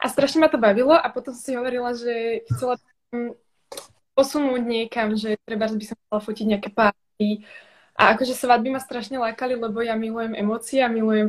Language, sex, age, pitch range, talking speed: Slovak, female, 20-39, 220-285 Hz, 215 wpm